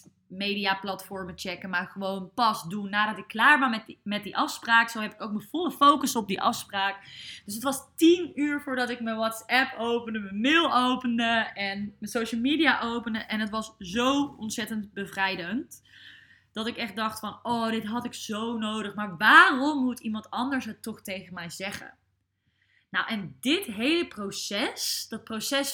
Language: Dutch